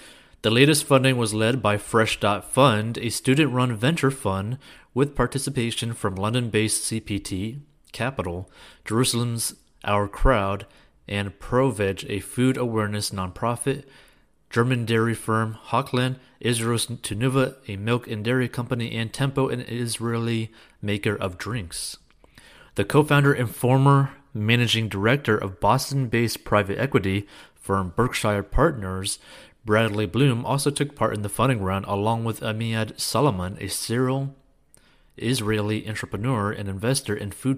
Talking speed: 130 wpm